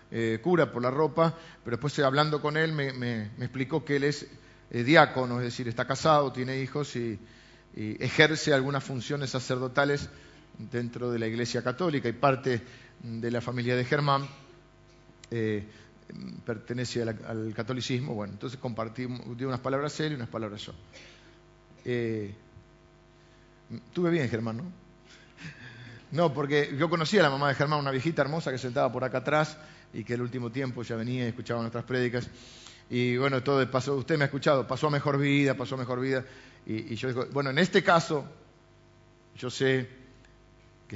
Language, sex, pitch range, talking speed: Spanish, male, 115-140 Hz, 175 wpm